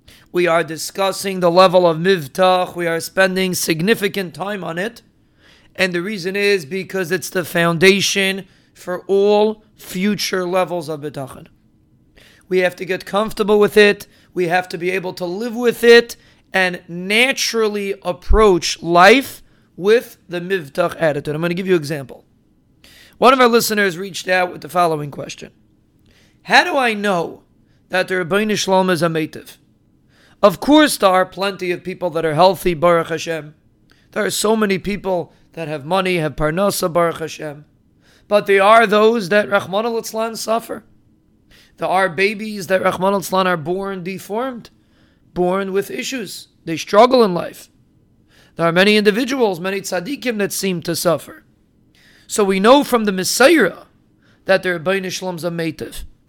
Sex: male